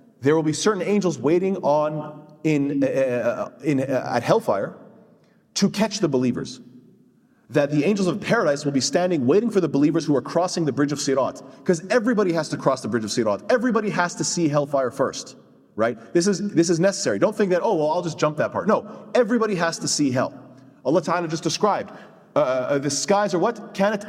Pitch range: 145-205 Hz